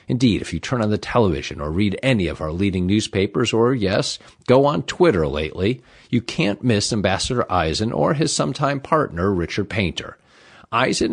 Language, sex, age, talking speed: English, male, 50-69, 175 wpm